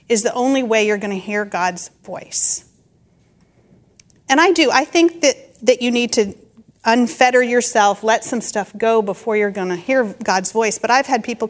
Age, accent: 40-59, American